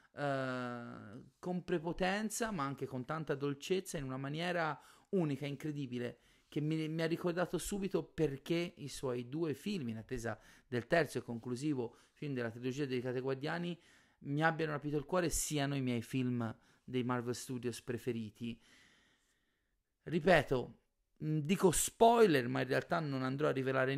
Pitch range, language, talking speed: 130-165 Hz, Italian, 150 wpm